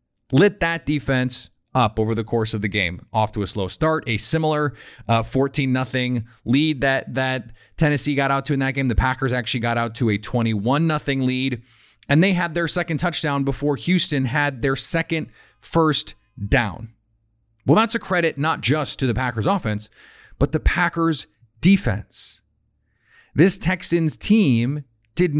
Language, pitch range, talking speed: English, 120-160 Hz, 165 wpm